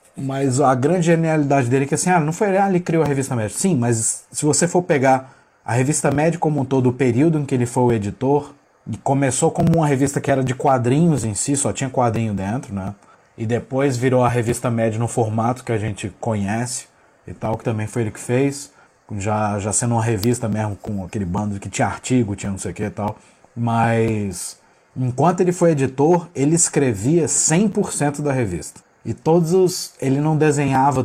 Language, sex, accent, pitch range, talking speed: English, male, Brazilian, 115-140 Hz, 210 wpm